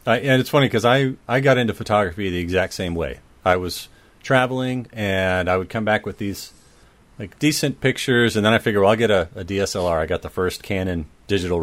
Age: 40-59